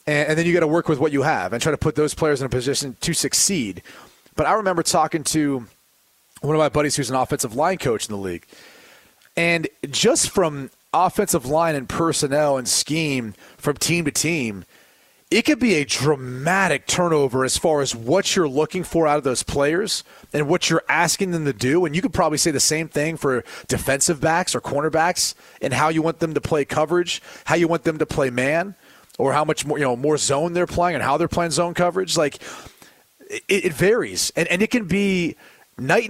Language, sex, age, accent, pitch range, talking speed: English, male, 30-49, American, 140-170 Hz, 215 wpm